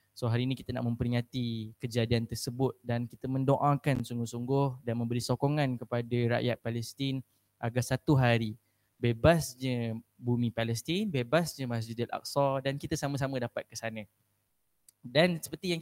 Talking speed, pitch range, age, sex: 145 wpm, 120-165 Hz, 10-29, male